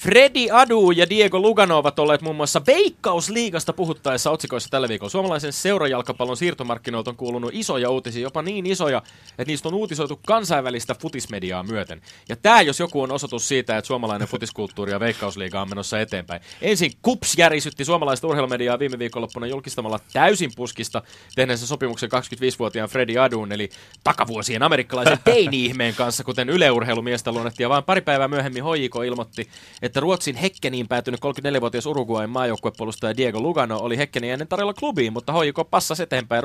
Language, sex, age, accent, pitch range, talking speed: Finnish, male, 30-49, native, 115-160 Hz, 155 wpm